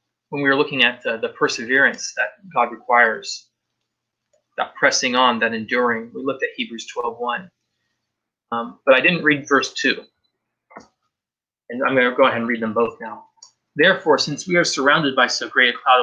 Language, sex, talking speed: English, male, 175 wpm